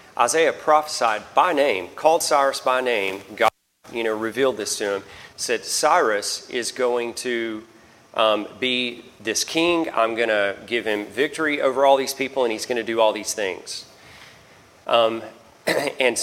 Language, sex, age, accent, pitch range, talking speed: English, male, 40-59, American, 110-140 Hz, 155 wpm